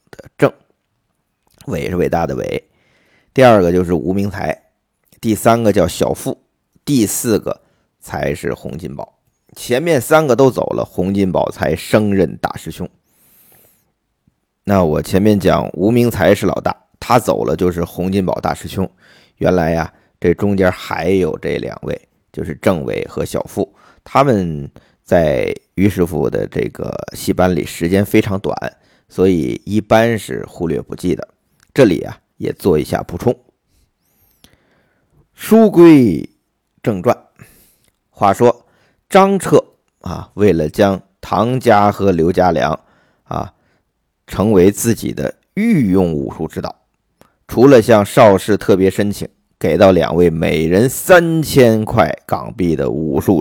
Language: Chinese